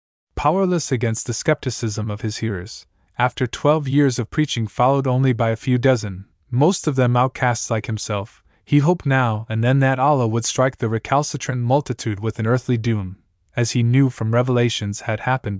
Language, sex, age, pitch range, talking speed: English, male, 20-39, 110-140 Hz, 180 wpm